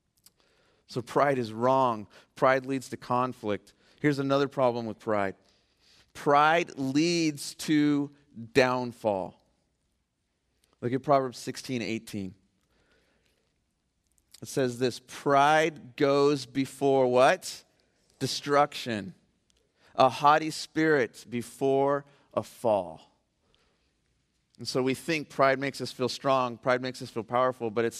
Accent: American